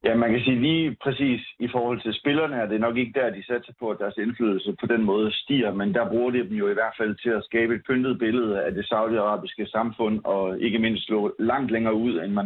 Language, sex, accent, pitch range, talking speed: Danish, male, native, 105-120 Hz, 255 wpm